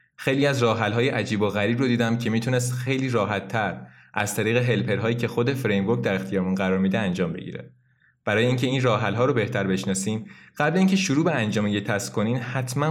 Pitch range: 100-130 Hz